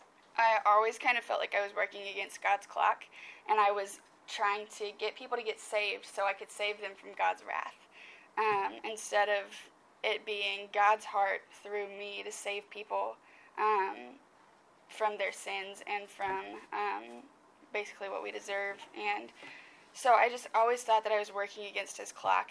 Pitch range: 200-220 Hz